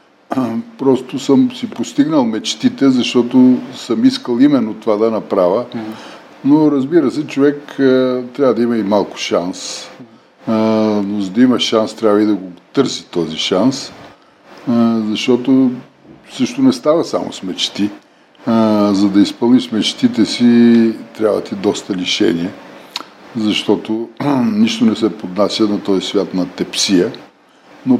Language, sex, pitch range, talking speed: Bulgarian, male, 105-130 Hz, 135 wpm